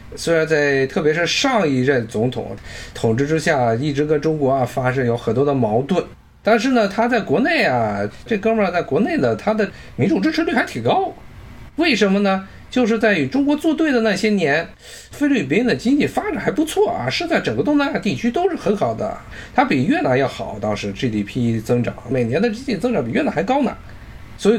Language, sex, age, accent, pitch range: Chinese, male, 50-69, native, 140-235 Hz